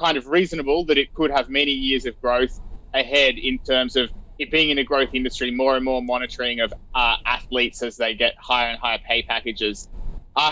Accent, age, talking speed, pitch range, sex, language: Australian, 20-39, 210 wpm, 125-160 Hz, male, English